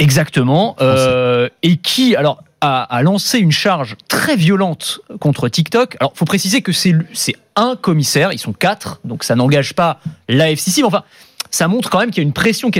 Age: 30-49